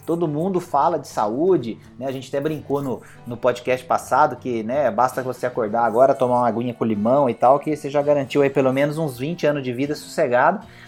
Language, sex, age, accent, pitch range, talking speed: Portuguese, male, 30-49, Brazilian, 125-155 Hz, 220 wpm